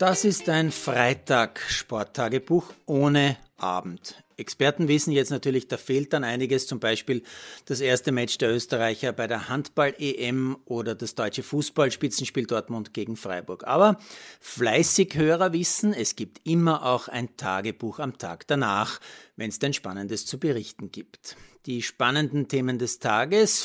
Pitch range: 115-155 Hz